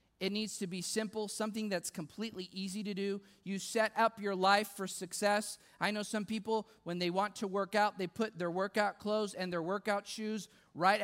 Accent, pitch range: American, 195-230 Hz